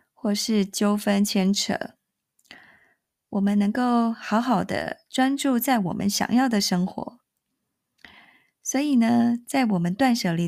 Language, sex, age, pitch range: Chinese, female, 20-39, 200-250 Hz